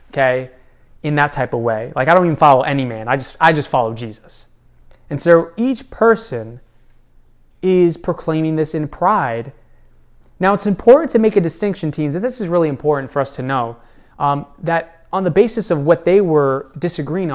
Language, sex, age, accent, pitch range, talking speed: English, male, 20-39, American, 135-185 Hz, 190 wpm